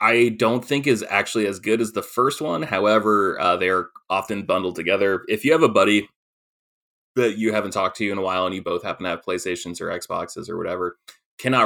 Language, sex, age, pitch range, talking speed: English, male, 20-39, 90-115 Hz, 220 wpm